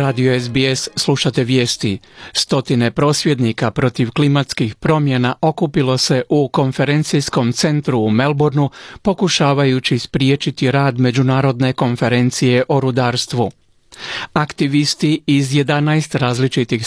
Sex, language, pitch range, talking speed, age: male, Croatian, 130-155 Hz, 95 wpm, 40-59